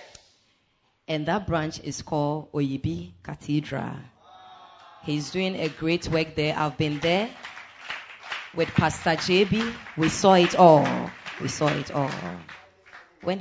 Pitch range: 140-185 Hz